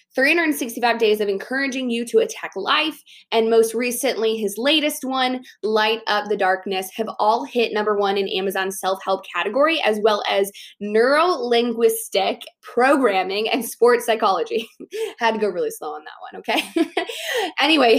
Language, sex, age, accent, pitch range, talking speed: English, female, 20-39, American, 210-260 Hz, 150 wpm